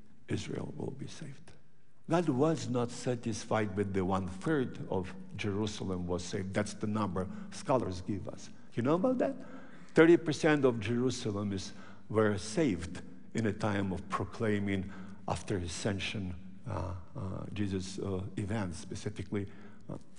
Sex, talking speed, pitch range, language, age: male, 135 wpm, 100-145 Hz, English, 60-79